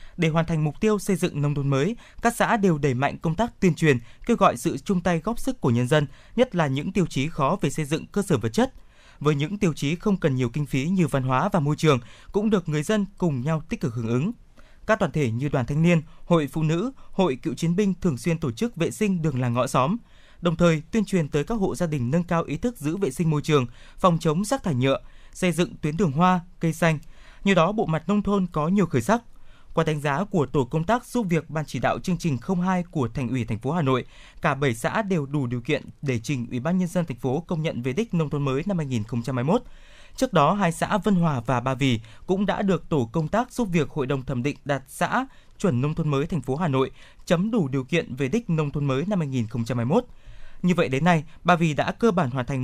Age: 20-39